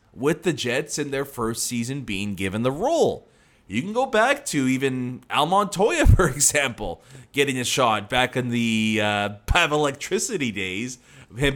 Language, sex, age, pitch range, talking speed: English, male, 30-49, 115-165 Hz, 165 wpm